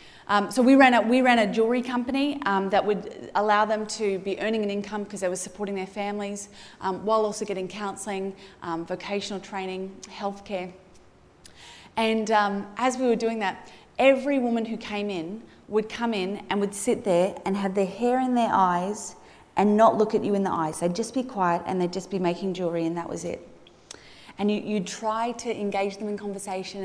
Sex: female